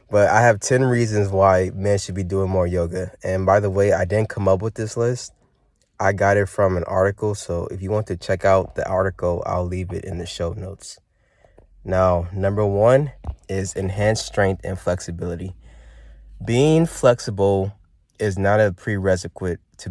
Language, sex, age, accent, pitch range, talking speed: English, male, 20-39, American, 90-110 Hz, 180 wpm